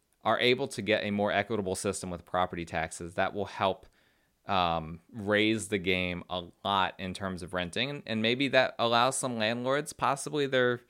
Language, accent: English, American